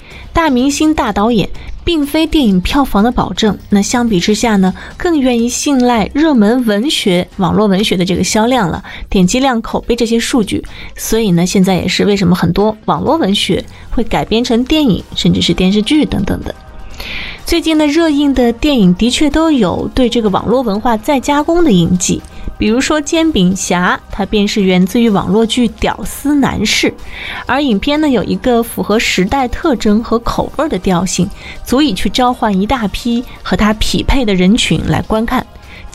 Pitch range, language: 195-270 Hz, Chinese